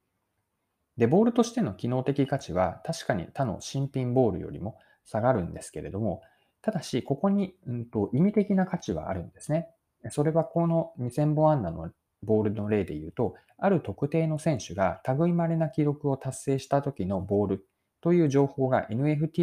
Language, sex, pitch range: Japanese, male, 100-155 Hz